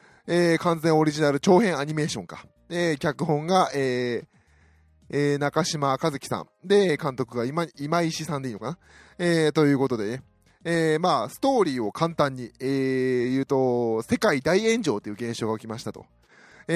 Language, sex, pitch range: Japanese, male, 130-170 Hz